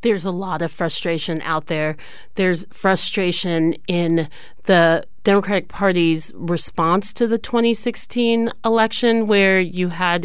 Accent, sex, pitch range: American, female, 165-195 Hz